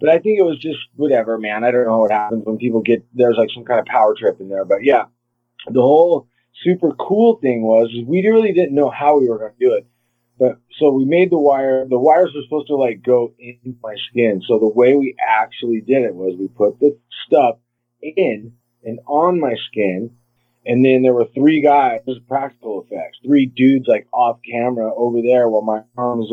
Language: English